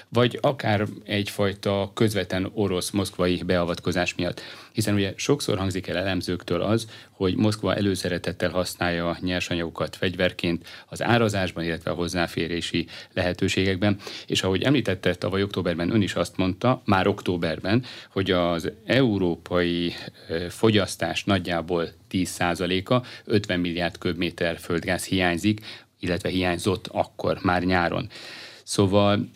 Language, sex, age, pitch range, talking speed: Hungarian, male, 30-49, 90-105 Hz, 110 wpm